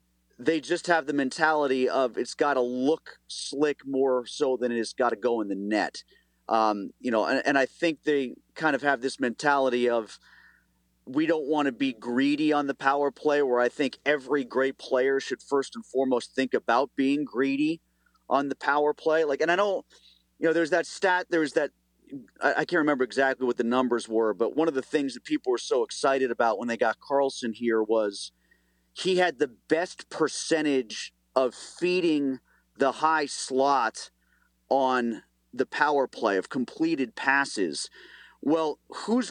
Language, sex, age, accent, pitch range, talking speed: English, male, 40-59, American, 125-155 Hz, 180 wpm